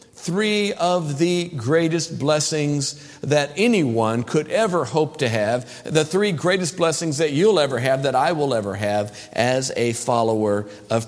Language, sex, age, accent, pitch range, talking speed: English, male, 50-69, American, 135-205 Hz, 155 wpm